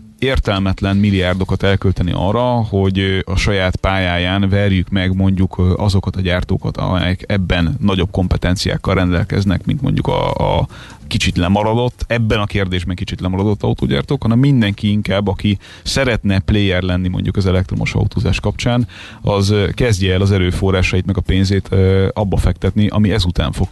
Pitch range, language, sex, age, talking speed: 90-105 Hz, Hungarian, male, 30-49, 140 wpm